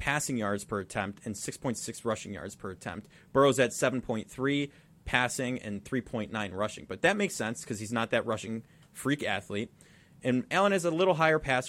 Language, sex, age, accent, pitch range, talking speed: English, male, 30-49, American, 120-165 Hz, 180 wpm